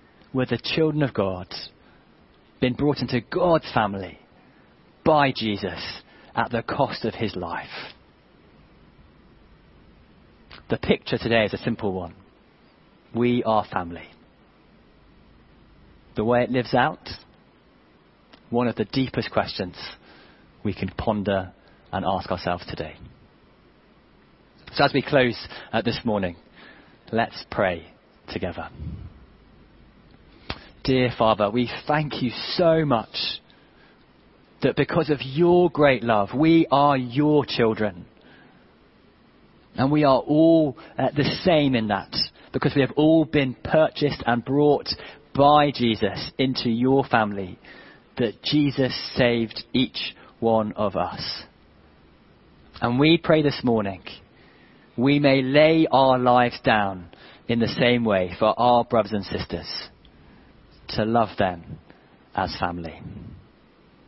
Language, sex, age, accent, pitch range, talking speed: English, male, 30-49, British, 100-140 Hz, 120 wpm